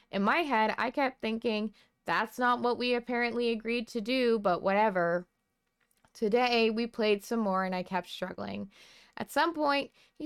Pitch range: 200-255 Hz